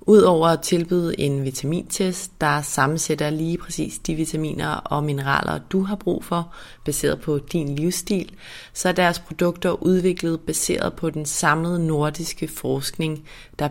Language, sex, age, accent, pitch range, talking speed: Danish, female, 30-49, native, 145-175 Hz, 145 wpm